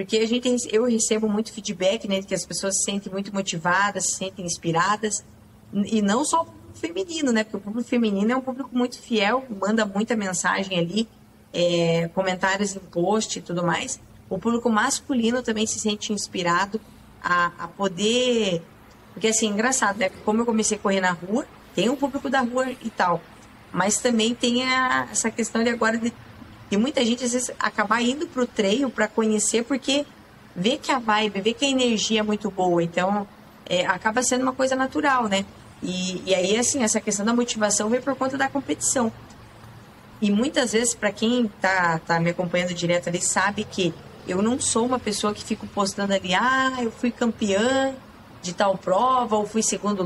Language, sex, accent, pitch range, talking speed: Portuguese, female, Brazilian, 190-240 Hz, 190 wpm